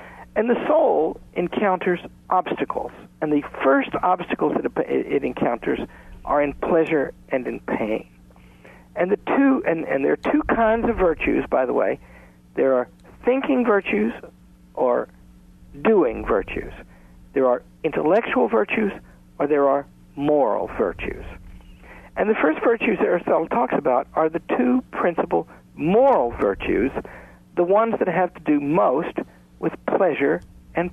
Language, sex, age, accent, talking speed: English, male, 60-79, American, 140 wpm